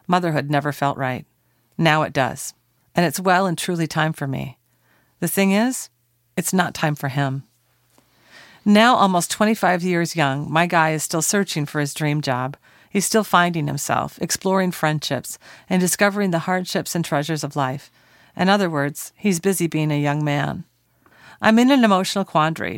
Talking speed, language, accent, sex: 170 wpm, English, American, female